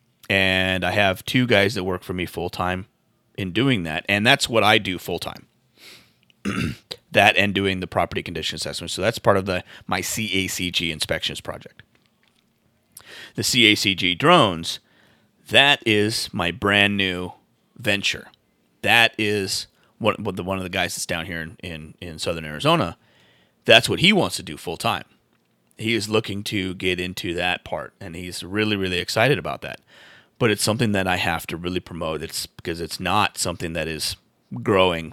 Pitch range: 90-105 Hz